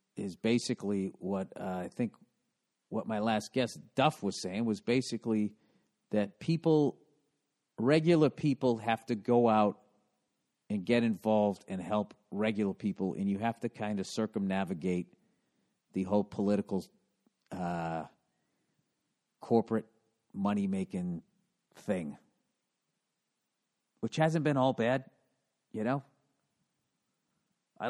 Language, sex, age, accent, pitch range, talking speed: English, male, 50-69, American, 100-130 Hz, 110 wpm